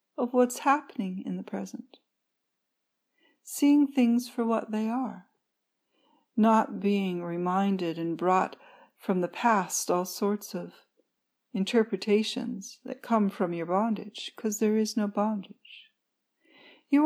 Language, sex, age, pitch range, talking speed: English, female, 60-79, 195-250 Hz, 125 wpm